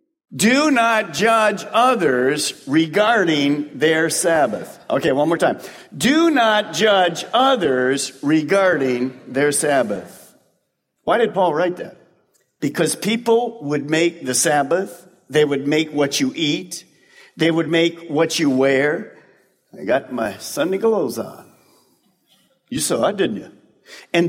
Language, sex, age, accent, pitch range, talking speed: English, male, 50-69, American, 150-225 Hz, 130 wpm